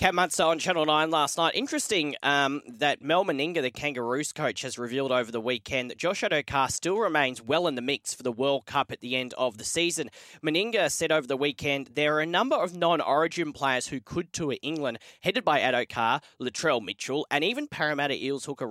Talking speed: 210 wpm